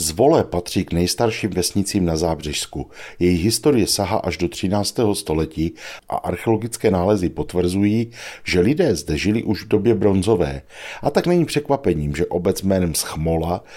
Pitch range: 85-110 Hz